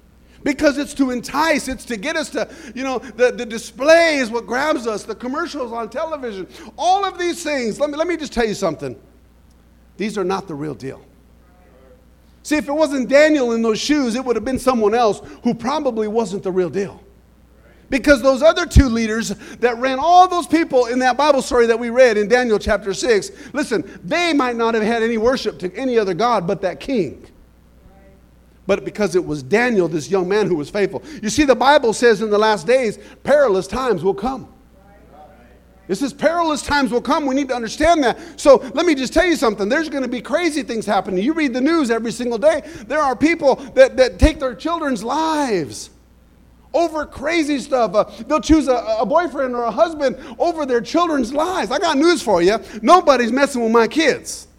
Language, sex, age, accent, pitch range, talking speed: English, male, 50-69, American, 210-295 Hz, 205 wpm